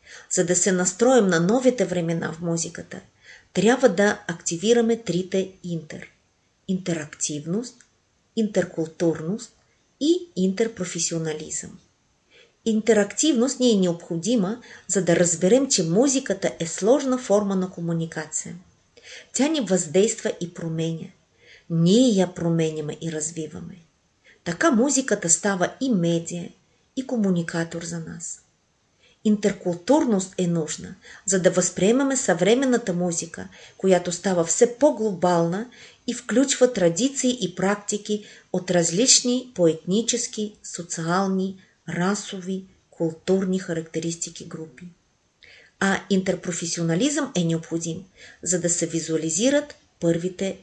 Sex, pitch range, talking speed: female, 170-225 Hz, 100 wpm